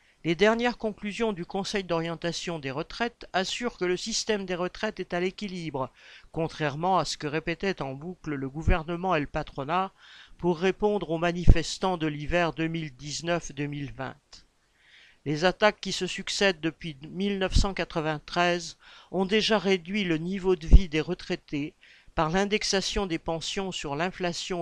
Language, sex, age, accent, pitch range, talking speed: French, male, 50-69, French, 160-195 Hz, 140 wpm